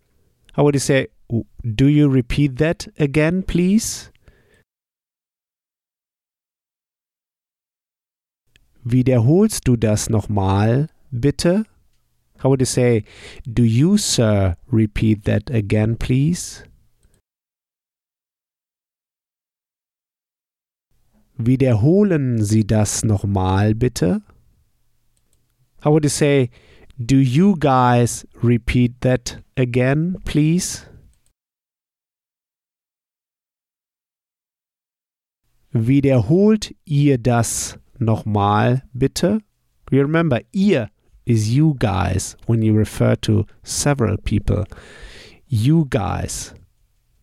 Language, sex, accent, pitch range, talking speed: German, male, German, 110-145 Hz, 75 wpm